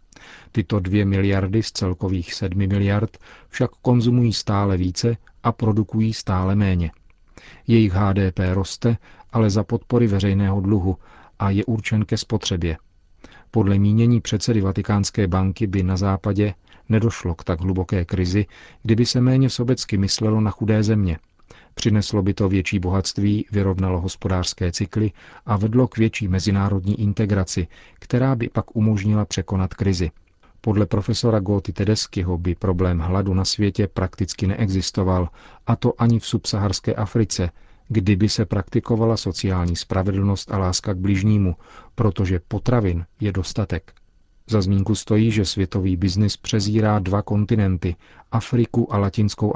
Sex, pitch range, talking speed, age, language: male, 95-110 Hz, 135 wpm, 40-59, Czech